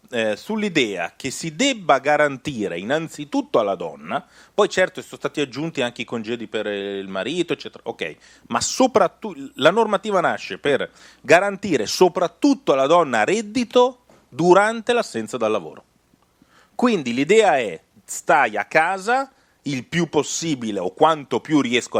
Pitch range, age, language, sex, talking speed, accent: 120-195 Hz, 30-49, Italian, male, 135 wpm, native